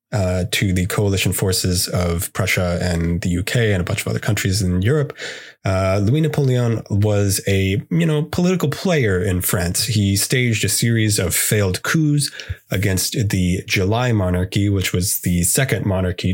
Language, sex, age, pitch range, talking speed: English, male, 20-39, 95-120 Hz, 160 wpm